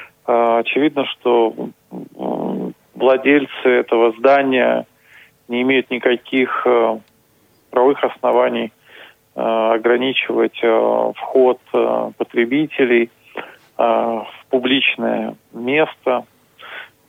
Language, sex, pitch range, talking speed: Russian, male, 115-130 Hz, 60 wpm